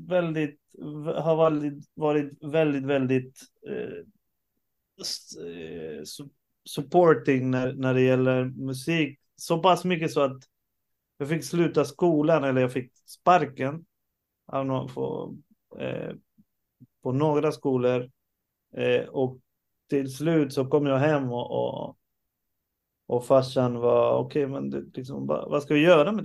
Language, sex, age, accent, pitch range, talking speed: Swedish, male, 30-49, native, 130-170 Hz, 110 wpm